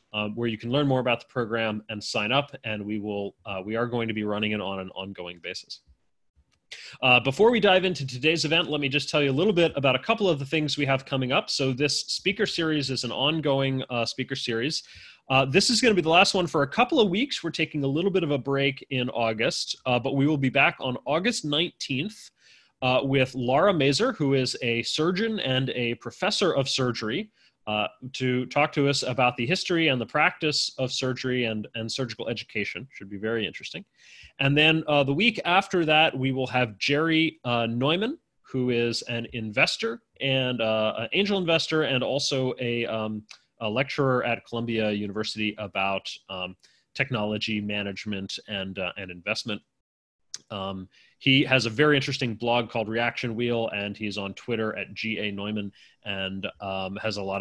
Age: 30-49